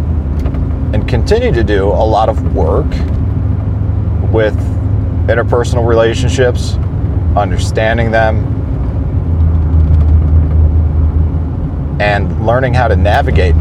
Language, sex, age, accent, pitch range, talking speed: English, male, 40-59, American, 80-90 Hz, 80 wpm